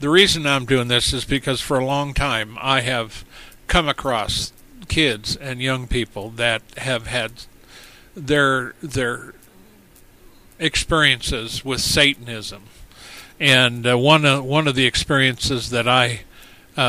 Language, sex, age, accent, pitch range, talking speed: English, male, 50-69, American, 115-140 Hz, 135 wpm